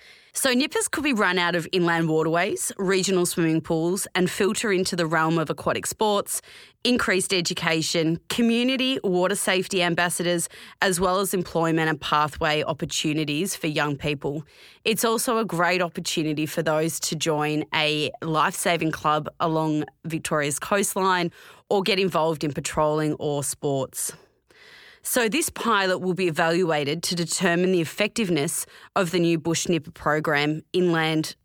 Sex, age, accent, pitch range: female, 30-49, Australian, 155-190 Hz